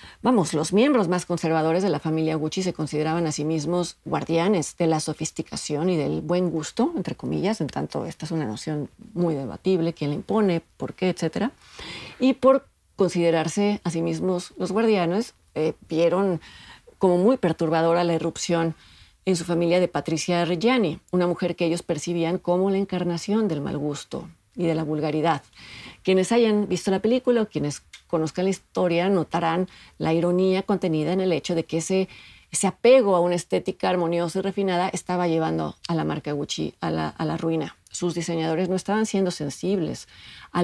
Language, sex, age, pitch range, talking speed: Spanish, female, 40-59, 160-190 Hz, 175 wpm